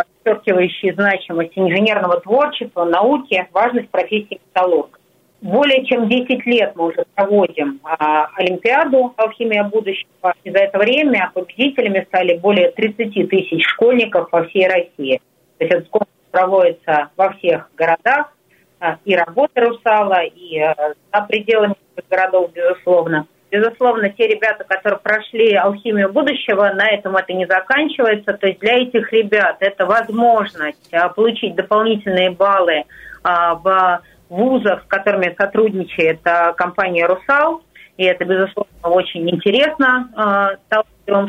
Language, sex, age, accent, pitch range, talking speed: Russian, female, 40-59, native, 180-220 Hz, 125 wpm